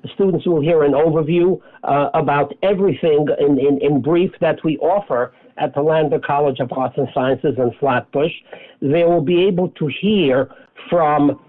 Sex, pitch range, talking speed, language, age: male, 145-175 Hz, 165 wpm, English, 60-79